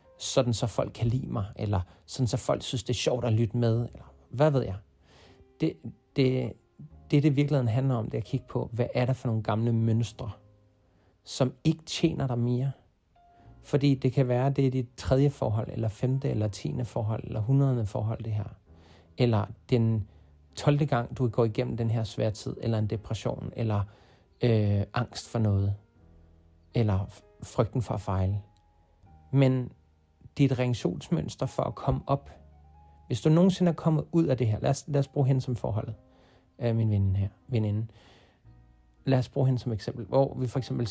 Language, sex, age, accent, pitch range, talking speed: Danish, male, 40-59, native, 100-130 Hz, 185 wpm